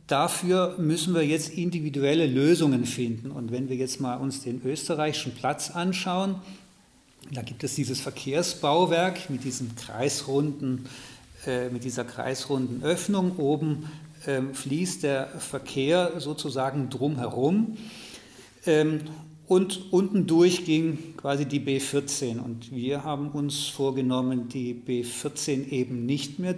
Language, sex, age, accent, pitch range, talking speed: German, male, 50-69, German, 130-165 Hz, 125 wpm